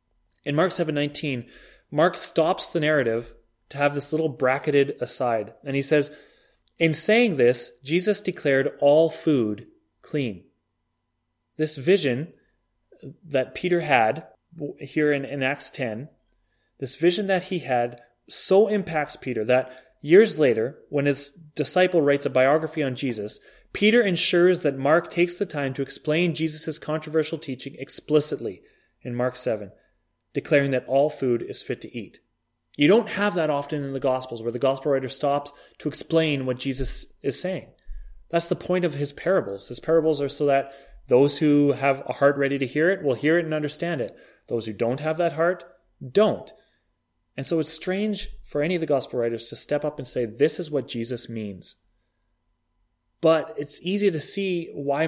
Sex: male